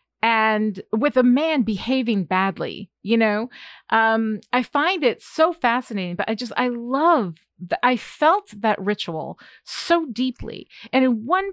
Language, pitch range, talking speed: English, 195-245 Hz, 150 wpm